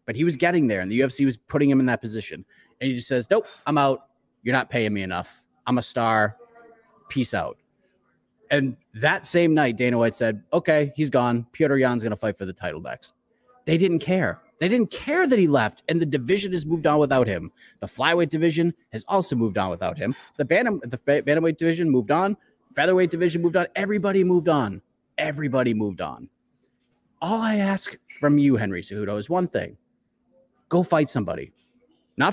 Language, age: English, 30-49